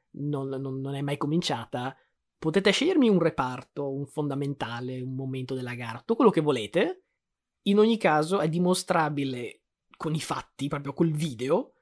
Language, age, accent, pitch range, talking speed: Italian, 20-39, native, 140-175 Hz, 155 wpm